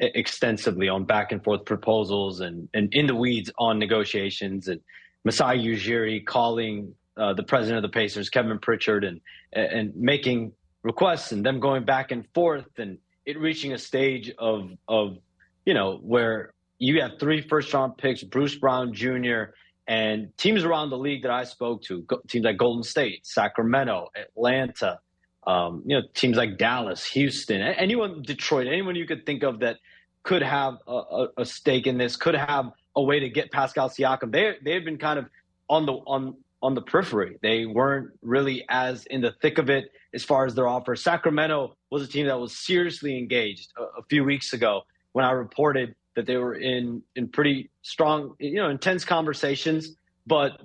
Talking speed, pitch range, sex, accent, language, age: 180 wpm, 110-140 Hz, male, American, English, 30-49